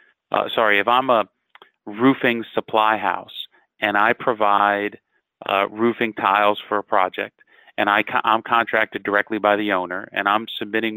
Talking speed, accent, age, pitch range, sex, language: 150 wpm, American, 40-59, 100-120 Hz, male, English